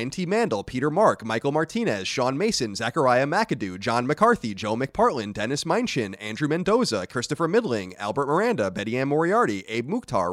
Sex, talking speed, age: male, 155 wpm, 30-49